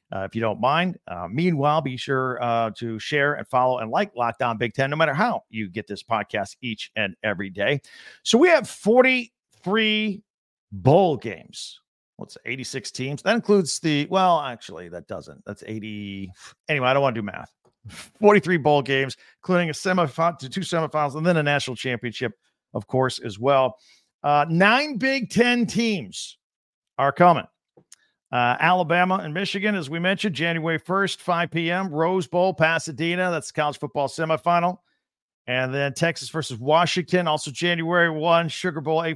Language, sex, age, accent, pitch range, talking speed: English, male, 50-69, American, 140-190 Hz, 170 wpm